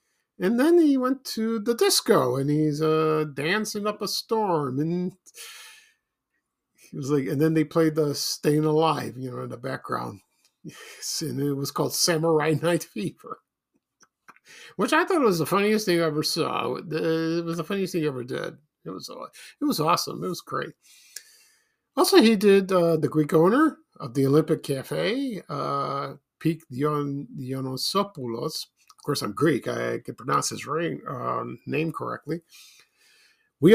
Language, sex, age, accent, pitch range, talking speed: English, male, 50-69, American, 140-195 Hz, 155 wpm